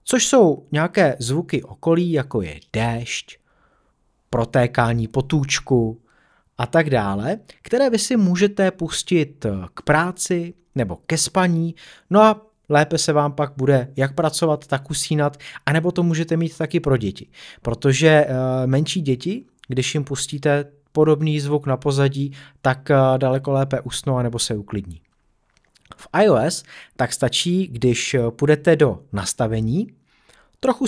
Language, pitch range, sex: Czech, 120-170 Hz, male